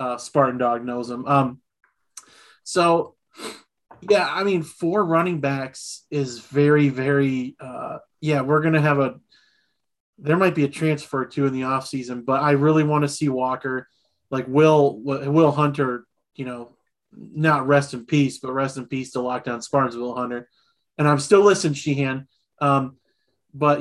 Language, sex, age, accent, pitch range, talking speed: English, male, 30-49, American, 130-145 Hz, 170 wpm